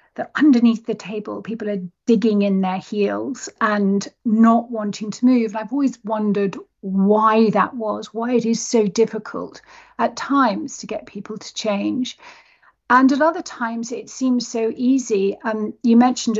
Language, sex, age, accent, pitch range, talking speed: English, female, 40-59, British, 210-250 Hz, 160 wpm